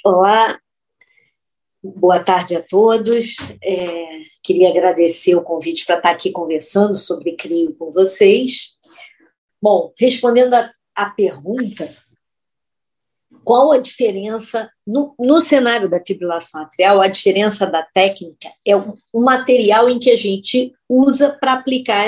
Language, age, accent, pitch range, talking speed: English, 50-69, Brazilian, 195-280 Hz, 120 wpm